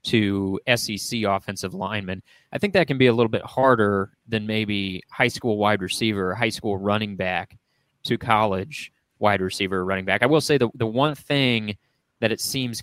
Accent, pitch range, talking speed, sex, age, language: American, 100-120 Hz, 190 wpm, male, 20-39, English